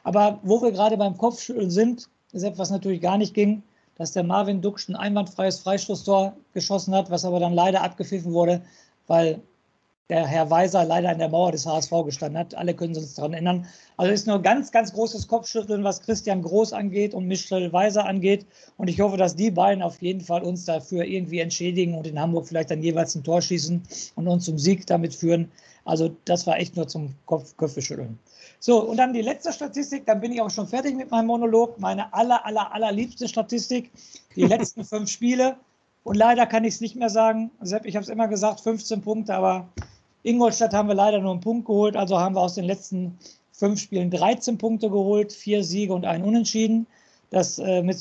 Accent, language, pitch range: German, German, 175-220 Hz